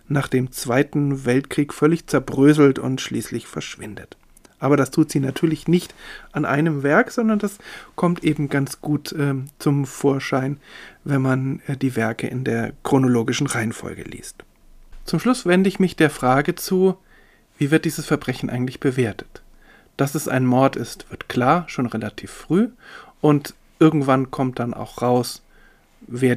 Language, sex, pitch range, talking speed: German, male, 125-155 Hz, 155 wpm